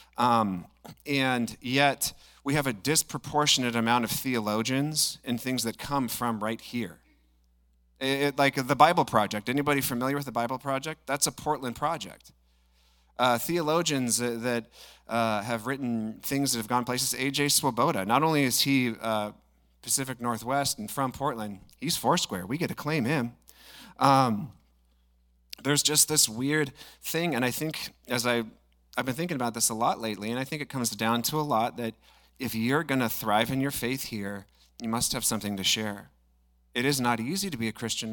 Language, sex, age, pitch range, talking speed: English, male, 40-59, 110-140 Hz, 180 wpm